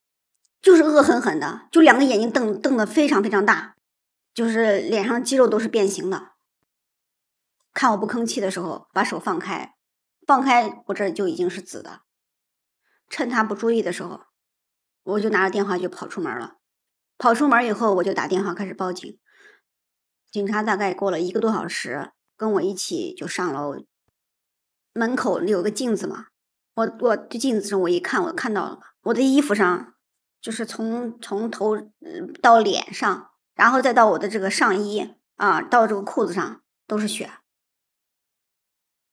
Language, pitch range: Chinese, 200-245 Hz